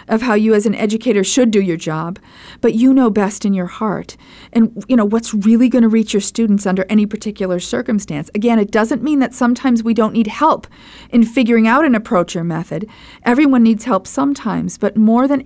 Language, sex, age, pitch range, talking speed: English, female, 40-59, 195-235 Hz, 210 wpm